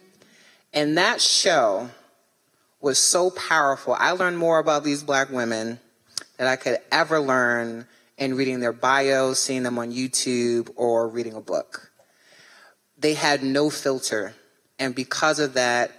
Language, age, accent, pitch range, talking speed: English, 30-49, American, 125-170 Hz, 145 wpm